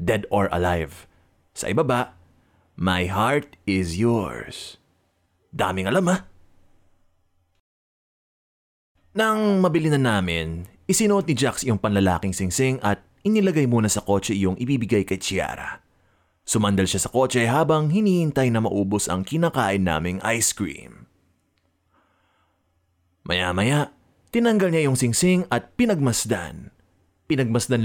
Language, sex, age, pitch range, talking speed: Filipino, male, 30-49, 90-135 Hz, 115 wpm